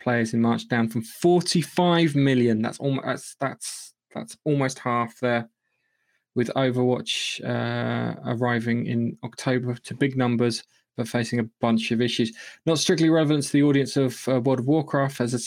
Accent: British